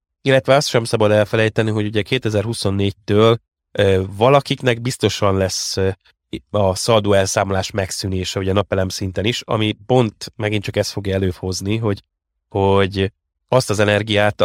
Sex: male